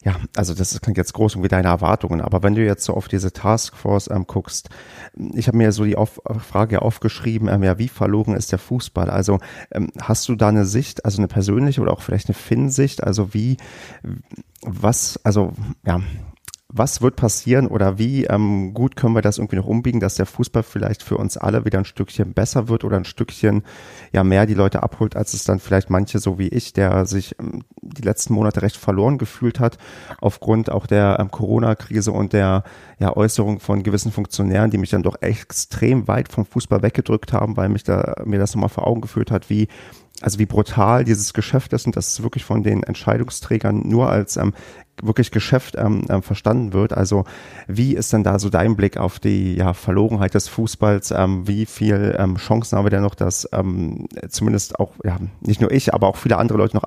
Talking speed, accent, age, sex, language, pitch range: 210 wpm, German, 30-49, male, German, 100-115 Hz